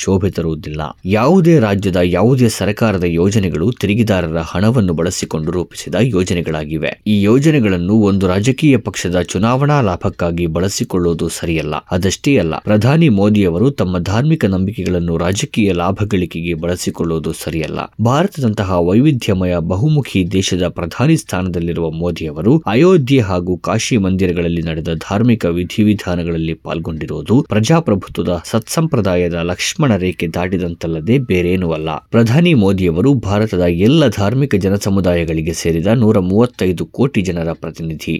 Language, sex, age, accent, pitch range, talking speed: Kannada, male, 20-39, native, 85-115 Hz, 105 wpm